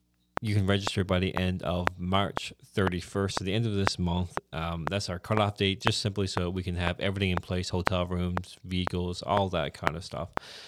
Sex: male